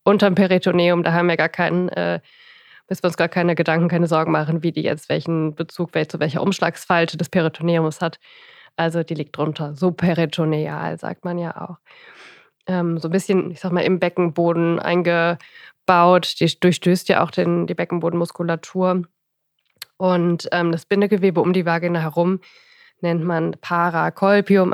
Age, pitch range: 20-39, 170-210 Hz